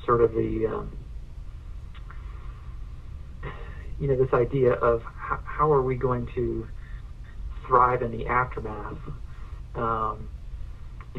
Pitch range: 90-130 Hz